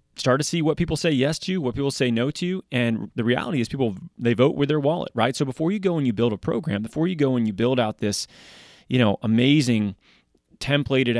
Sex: male